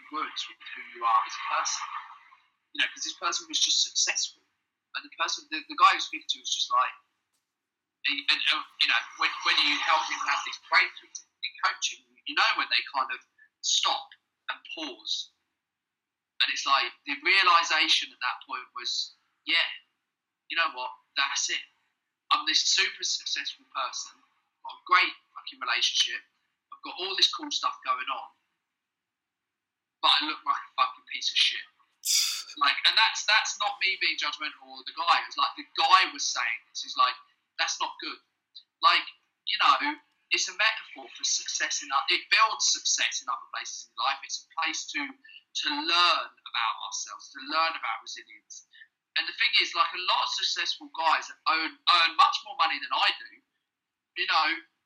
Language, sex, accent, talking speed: English, male, British, 185 wpm